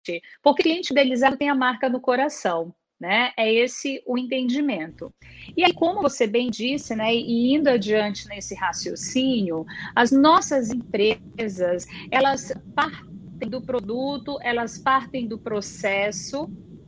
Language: Portuguese